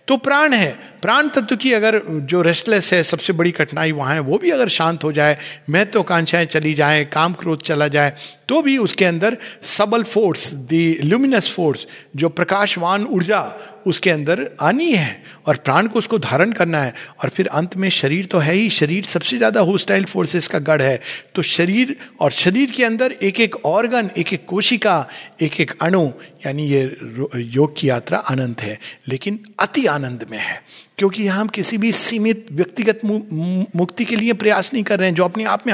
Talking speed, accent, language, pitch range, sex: 185 wpm, native, Hindi, 150-215 Hz, male